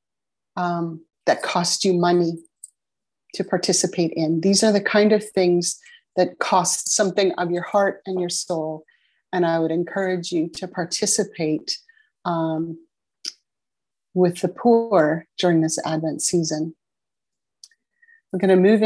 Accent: American